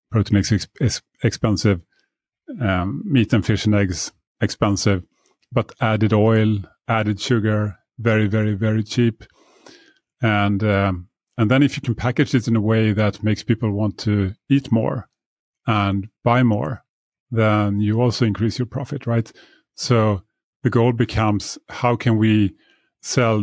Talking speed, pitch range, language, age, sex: 145 wpm, 105-120 Hz, English, 30-49, male